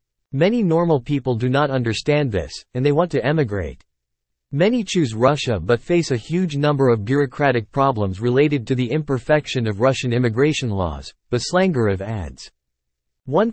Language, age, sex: English, 40-59, male